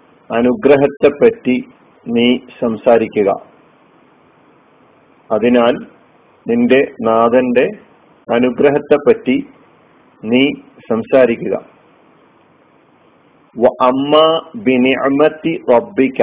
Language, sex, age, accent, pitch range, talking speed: Malayalam, male, 50-69, native, 125-145 Hz, 35 wpm